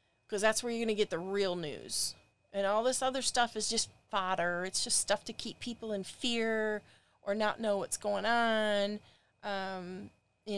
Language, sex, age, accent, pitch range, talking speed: English, female, 30-49, American, 195-240 Hz, 195 wpm